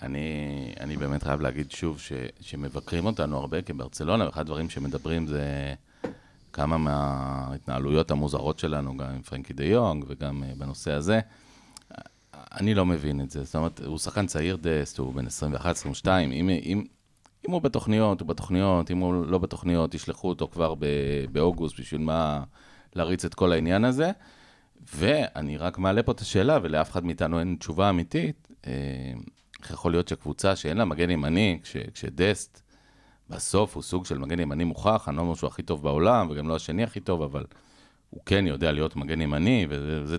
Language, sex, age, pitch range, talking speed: Hebrew, male, 40-59, 75-90 Hz, 165 wpm